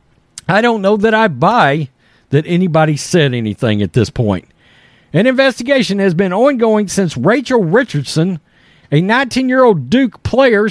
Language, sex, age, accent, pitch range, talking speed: English, male, 50-69, American, 170-260 Hz, 140 wpm